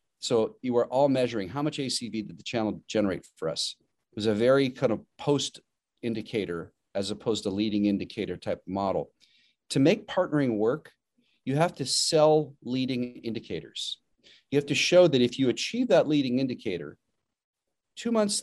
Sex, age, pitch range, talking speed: male, 40-59, 110-145 Hz, 170 wpm